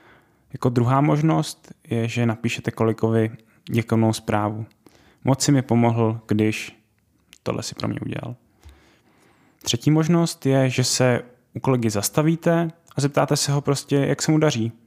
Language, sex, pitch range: Czech, male, 110-135 Hz